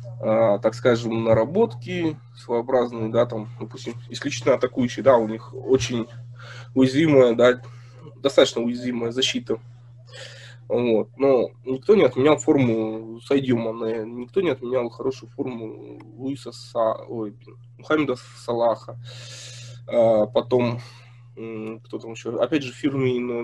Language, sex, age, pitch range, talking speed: Russian, male, 20-39, 120-135 Hz, 110 wpm